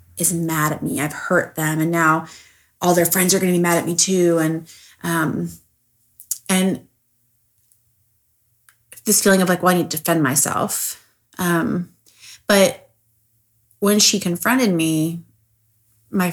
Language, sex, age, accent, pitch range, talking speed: English, female, 20-39, American, 115-175 Hz, 145 wpm